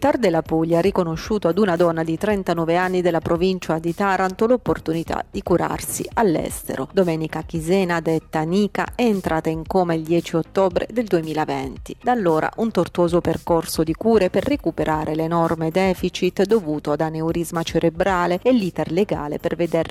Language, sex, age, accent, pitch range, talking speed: Italian, female, 30-49, native, 155-190 Hz, 160 wpm